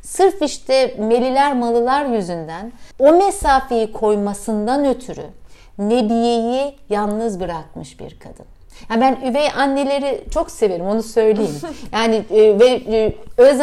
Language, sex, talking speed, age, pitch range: Turkish, female, 105 wpm, 60-79, 200-265 Hz